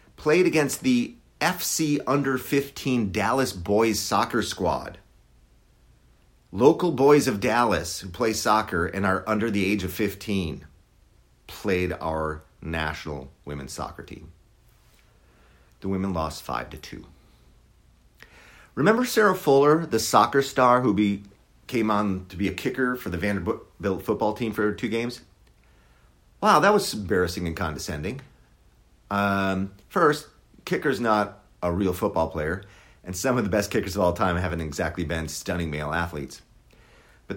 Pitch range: 80-115 Hz